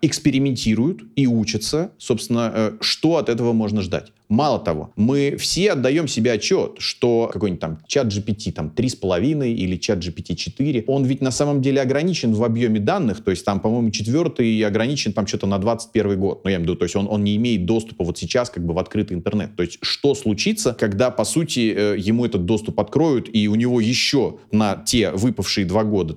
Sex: male